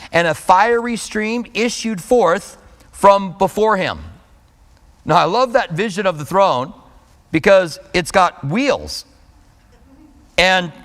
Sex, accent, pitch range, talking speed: male, American, 135-190 Hz, 120 wpm